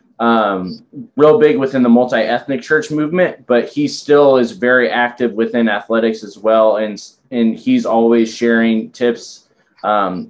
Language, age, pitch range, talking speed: English, 20-39, 115-130 Hz, 145 wpm